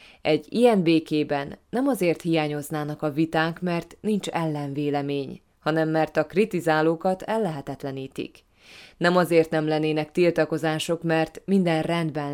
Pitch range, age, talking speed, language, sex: 150-175 Hz, 20-39, 115 wpm, Hungarian, female